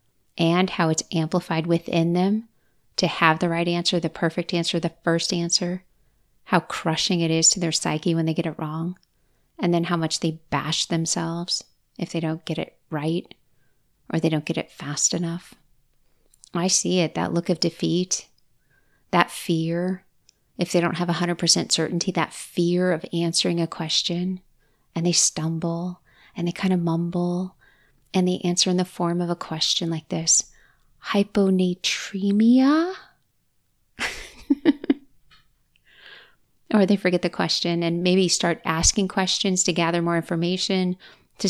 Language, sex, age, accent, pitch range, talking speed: English, female, 30-49, American, 165-180 Hz, 150 wpm